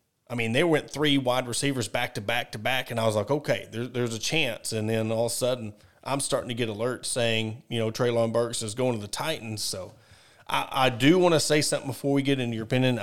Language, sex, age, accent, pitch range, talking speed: English, male, 30-49, American, 120-145 Hz, 260 wpm